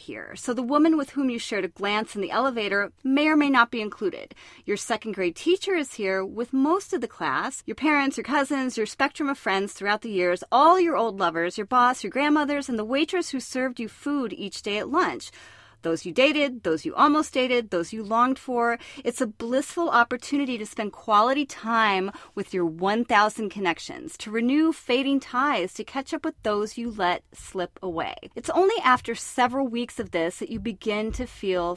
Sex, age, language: female, 30-49, English